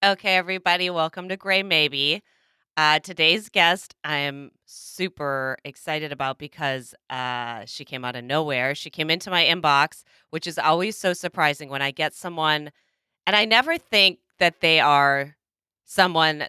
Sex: female